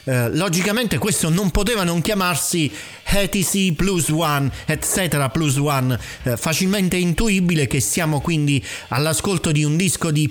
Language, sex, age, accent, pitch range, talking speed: Italian, male, 40-59, native, 130-175 Hz, 140 wpm